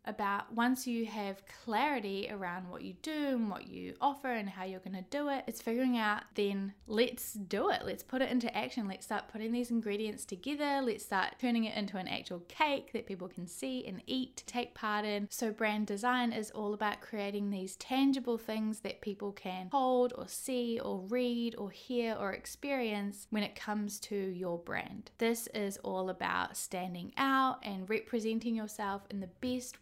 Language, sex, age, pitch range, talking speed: English, female, 10-29, 195-245 Hz, 190 wpm